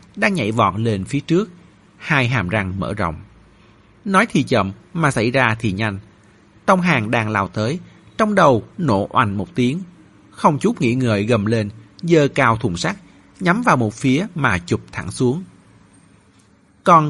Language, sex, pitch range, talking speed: Vietnamese, male, 105-160 Hz, 170 wpm